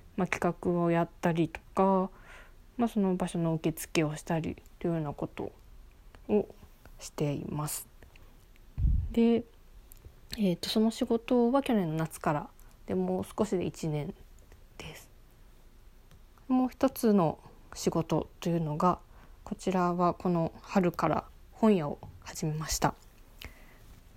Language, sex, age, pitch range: Japanese, female, 20-39, 160-200 Hz